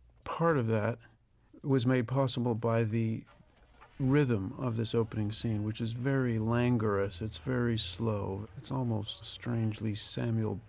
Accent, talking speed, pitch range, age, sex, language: American, 135 wpm, 105-120 Hz, 50-69, male, English